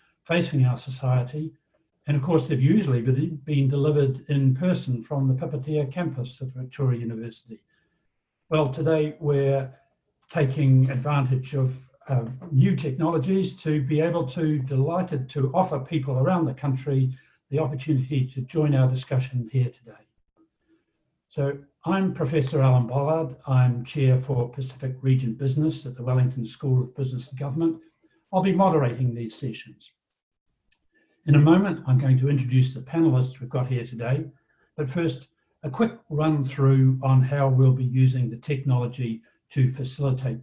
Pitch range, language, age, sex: 130-155 Hz, English, 60-79, male